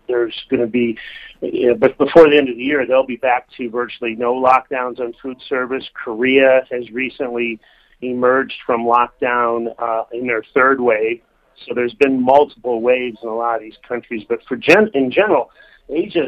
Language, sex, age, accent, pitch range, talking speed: English, male, 40-59, American, 115-135 Hz, 190 wpm